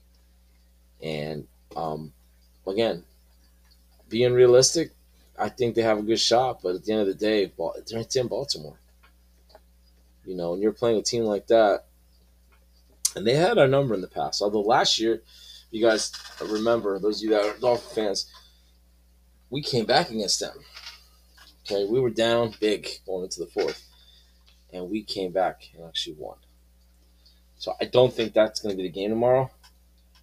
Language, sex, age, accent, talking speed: English, male, 20-39, American, 165 wpm